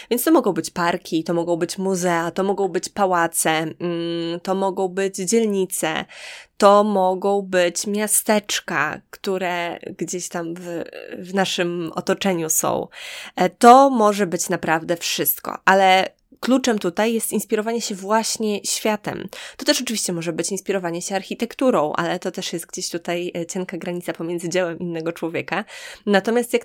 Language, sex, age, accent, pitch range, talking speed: Polish, female, 20-39, native, 175-215 Hz, 145 wpm